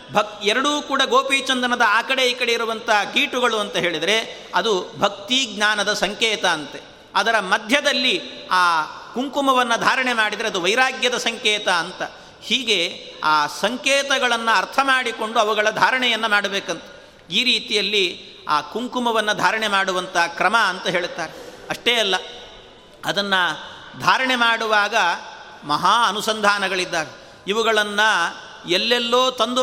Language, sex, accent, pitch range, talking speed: Kannada, male, native, 200-245 Hz, 110 wpm